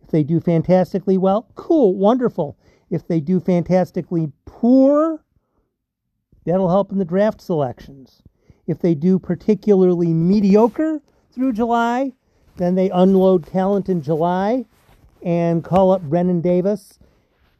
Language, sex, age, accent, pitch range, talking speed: English, male, 50-69, American, 160-190 Hz, 120 wpm